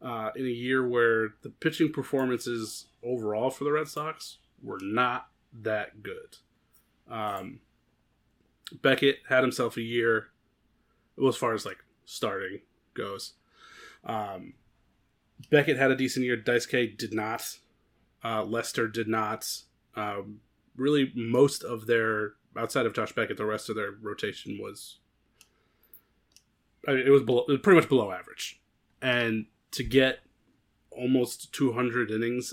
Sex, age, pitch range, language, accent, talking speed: male, 30-49, 110-130 Hz, English, American, 135 wpm